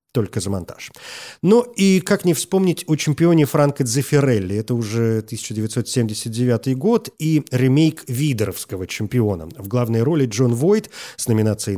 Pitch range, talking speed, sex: 110-140 Hz, 140 wpm, male